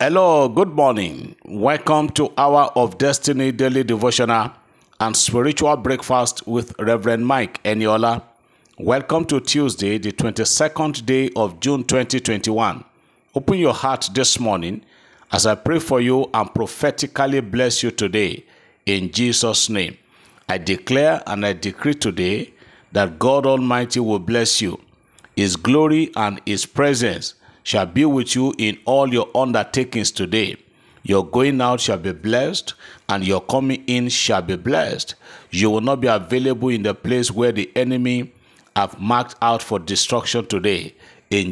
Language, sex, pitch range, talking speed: English, male, 110-135 Hz, 145 wpm